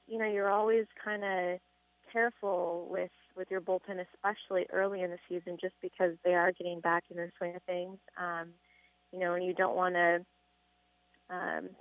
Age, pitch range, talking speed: 20-39, 175-190 Hz, 185 wpm